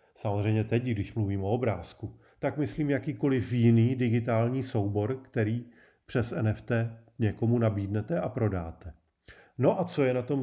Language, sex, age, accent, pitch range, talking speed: Czech, male, 40-59, native, 110-135 Hz, 145 wpm